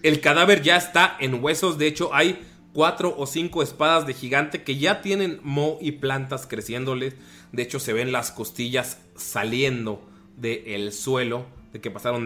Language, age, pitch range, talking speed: Spanish, 20-39, 115-150 Hz, 170 wpm